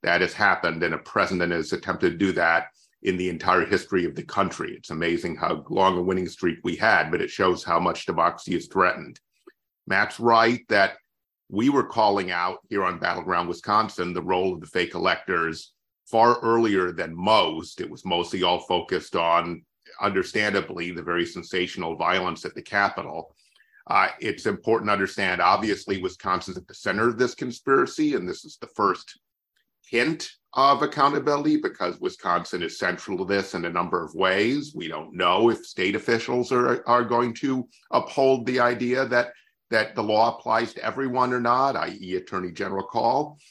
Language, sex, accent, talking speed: English, male, American, 175 wpm